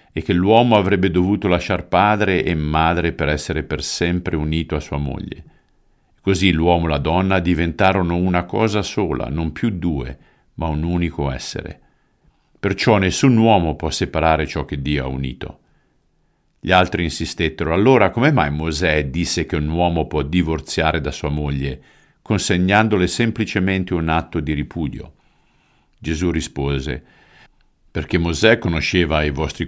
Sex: male